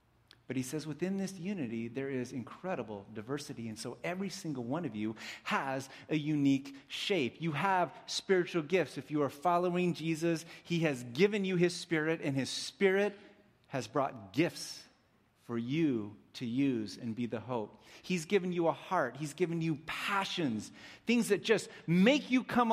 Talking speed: 170 wpm